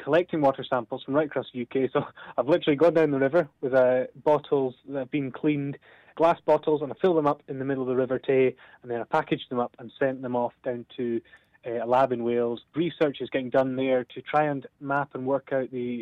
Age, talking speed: 20-39, 245 wpm